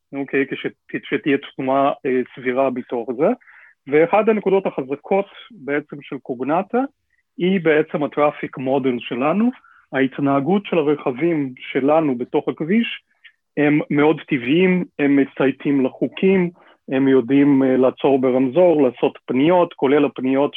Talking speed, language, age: 110 wpm, Hebrew, 30-49